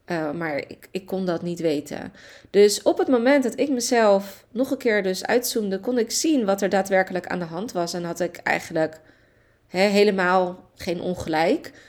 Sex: female